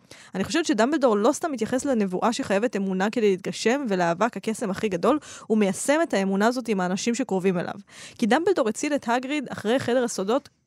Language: Hebrew